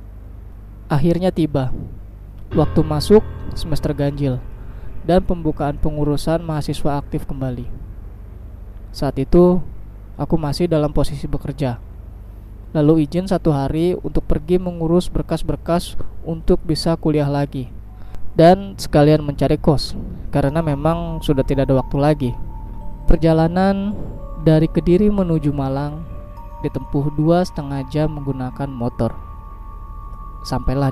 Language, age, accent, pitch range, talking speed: Indonesian, 20-39, native, 105-155 Hz, 105 wpm